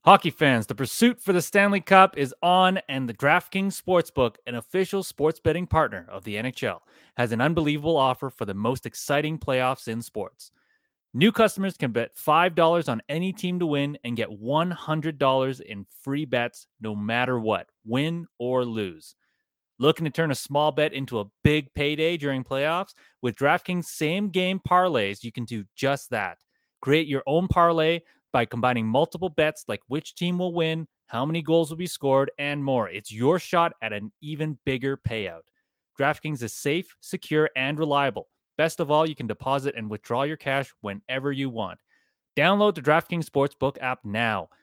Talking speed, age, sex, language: 175 wpm, 30-49, male, English